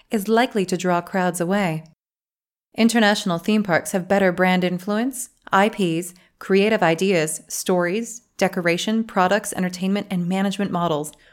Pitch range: 170-205 Hz